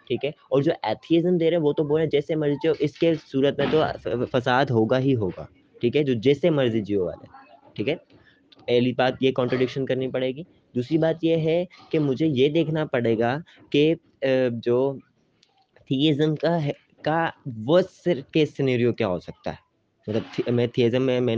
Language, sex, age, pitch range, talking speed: Urdu, male, 20-39, 120-155 Hz, 175 wpm